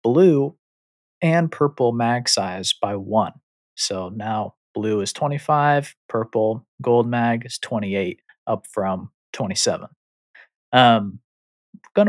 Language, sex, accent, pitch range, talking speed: English, male, American, 110-140 Hz, 110 wpm